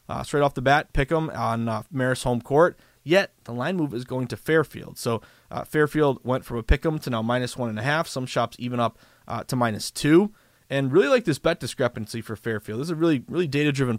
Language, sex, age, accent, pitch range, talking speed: English, male, 20-39, American, 120-165 Hz, 250 wpm